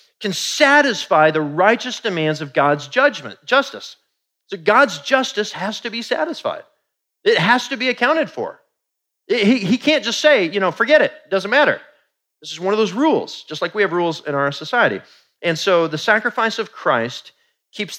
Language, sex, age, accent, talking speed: English, male, 40-59, American, 185 wpm